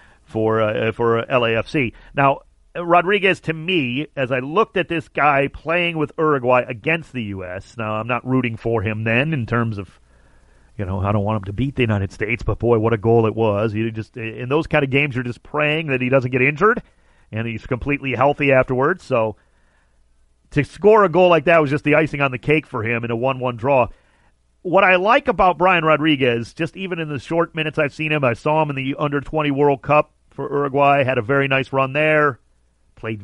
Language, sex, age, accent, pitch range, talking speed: English, male, 40-59, American, 115-165 Hz, 215 wpm